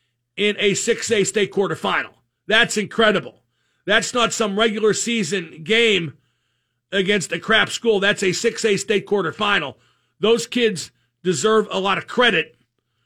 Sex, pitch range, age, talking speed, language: male, 135-225 Hz, 50-69, 135 wpm, English